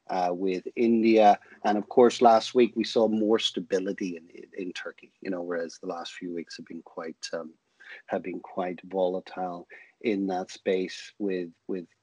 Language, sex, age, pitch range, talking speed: English, male, 40-59, 95-115 Hz, 180 wpm